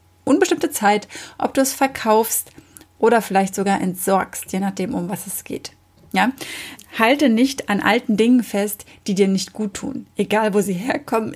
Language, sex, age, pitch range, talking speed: German, female, 30-49, 195-240 Hz, 170 wpm